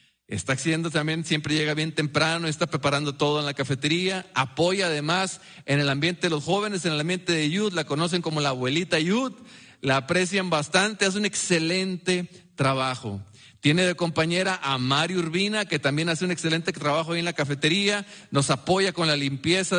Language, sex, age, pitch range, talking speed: English, male, 40-59, 130-180 Hz, 180 wpm